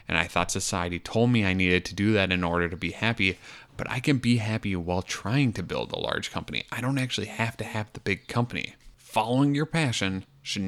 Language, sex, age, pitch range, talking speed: English, male, 20-39, 85-110 Hz, 230 wpm